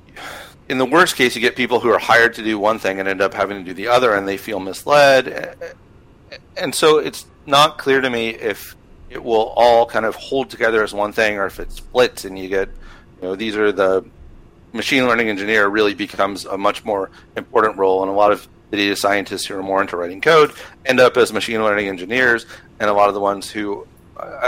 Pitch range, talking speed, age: 95-120 Hz, 230 wpm, 40-59